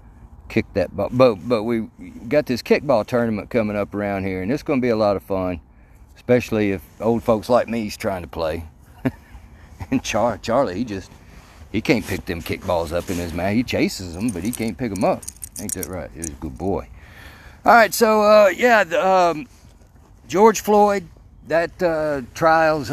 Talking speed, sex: 195 wpm, male